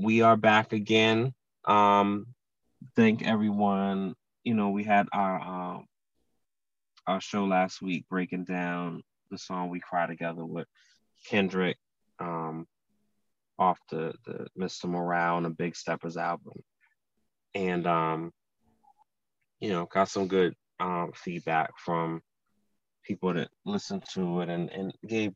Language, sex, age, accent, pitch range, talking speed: English, male, 20-39, American, 85-110 Hz, 130 wpm